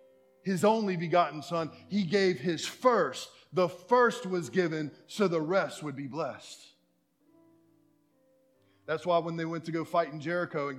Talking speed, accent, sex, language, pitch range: 160 wpm, American, male, English, 175-220 Hz